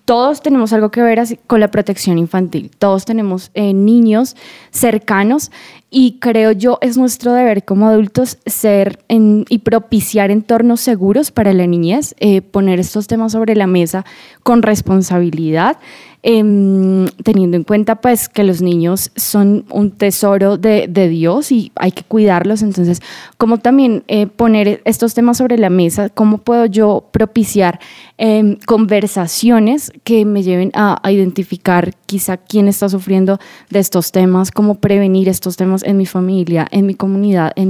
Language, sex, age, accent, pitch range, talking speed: Spanish, female, 10-29, Colombian, 190-225 Hz, 160 wpm